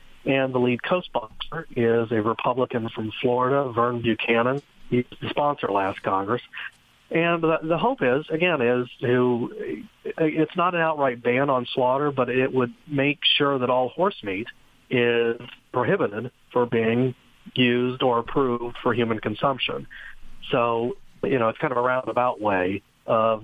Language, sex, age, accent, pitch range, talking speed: English, male, 40-59, American, 110-130 Hz, 155 wpm